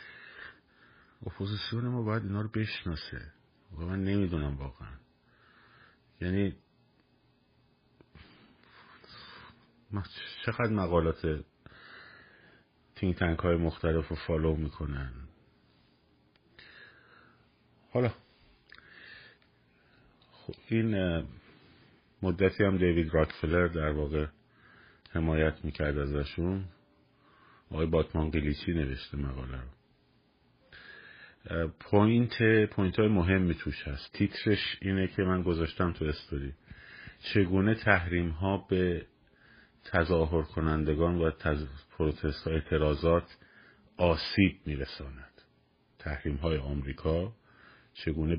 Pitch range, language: 75-95 Hz, Persian